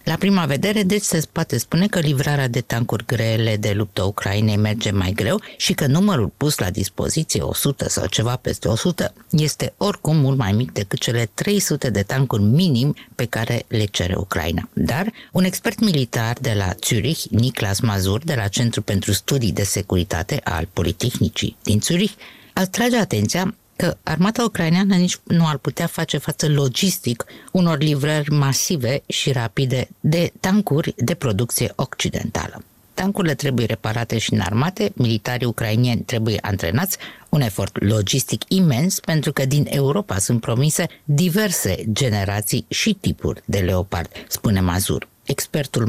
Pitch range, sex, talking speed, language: 105-160 Hz, female, 150 wpm, Romanian